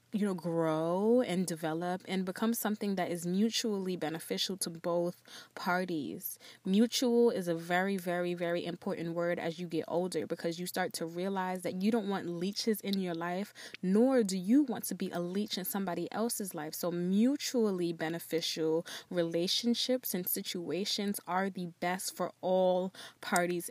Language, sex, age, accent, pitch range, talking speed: English, female, 20-39, American, 170-215 Hz, 160 wpm